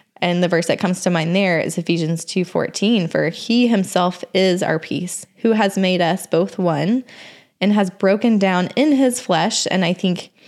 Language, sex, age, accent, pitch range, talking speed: English, female, 20-39, American, 170-210 Hz, 190 wpm